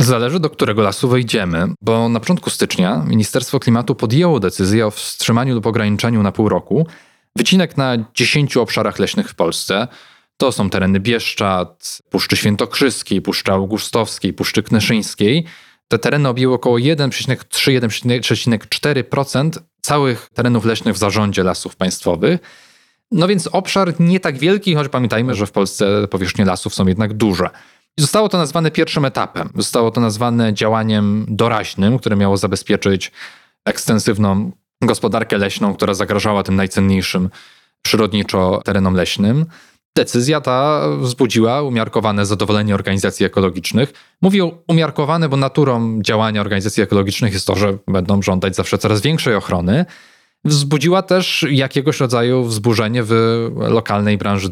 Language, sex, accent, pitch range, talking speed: Polish, male, native, 100-140 Hz, 130 wpm